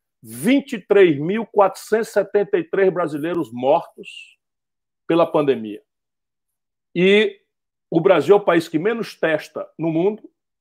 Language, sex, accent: Portuguese, male, Brazilian